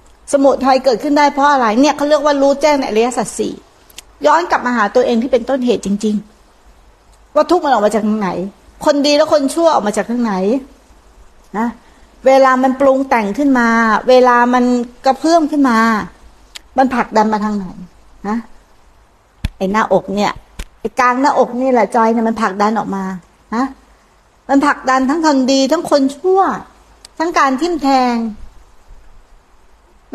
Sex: female